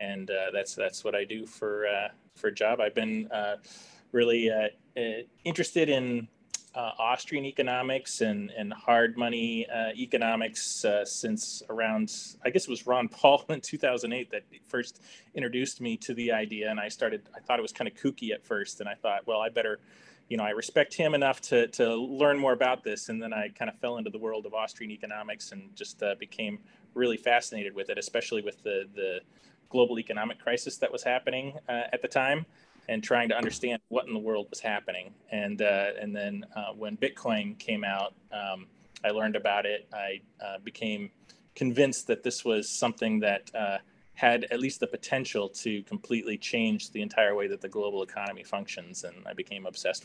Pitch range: 105-145 Hz